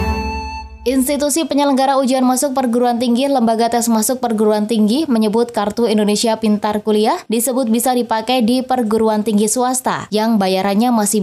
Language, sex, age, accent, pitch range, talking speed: Indonesian, female, 20-39, native, 210-250 Hz, 140 wpm